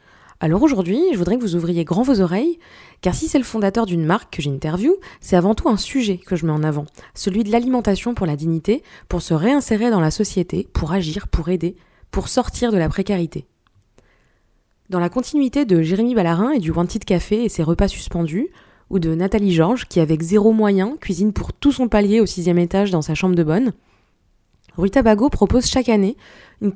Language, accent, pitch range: French, French, 175-230 Hz